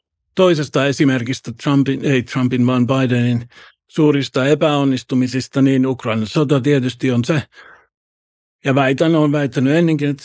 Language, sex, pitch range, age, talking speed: Finnish, male, 120-145 Hz, 60-79, 115 wpm